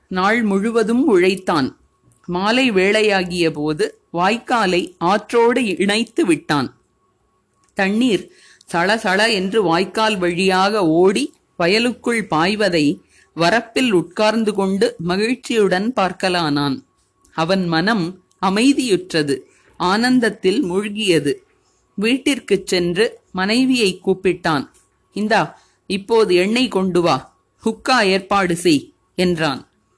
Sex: female